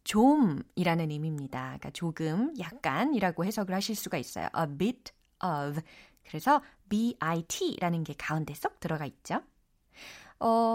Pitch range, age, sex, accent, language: 165-260 Hz, 20-39, female, native, Korean